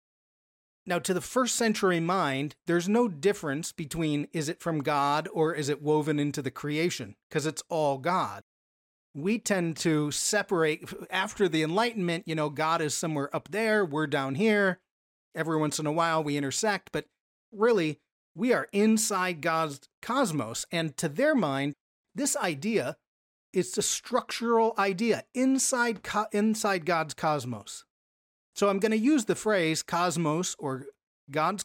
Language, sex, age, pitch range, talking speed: English, male, 40-59, 150-200 Hz, 150 wpm